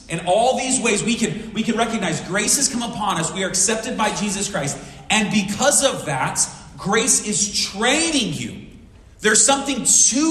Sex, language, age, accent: male, English, 30-49, American